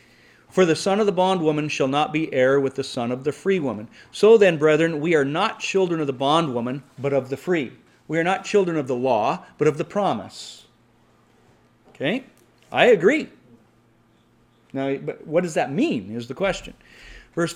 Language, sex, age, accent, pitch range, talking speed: English, male, 40-59, American, 125-155 Hz, 190 wpm